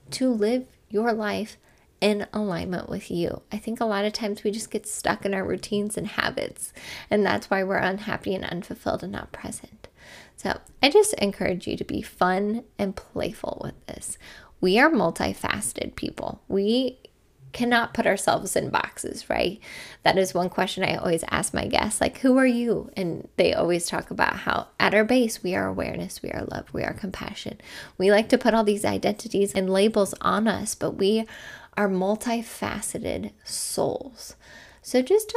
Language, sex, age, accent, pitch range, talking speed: English, female, 10-29, American, 185-230 Hz, 180 wpm